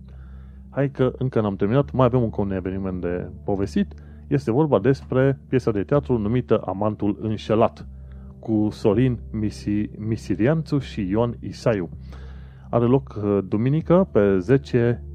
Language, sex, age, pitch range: Romanian, male, 30-49, 95-130 Hz